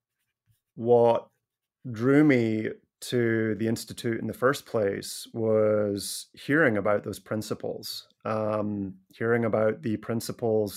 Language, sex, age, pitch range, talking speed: English, male, 30-49, 110-130 Hz, 110 wpm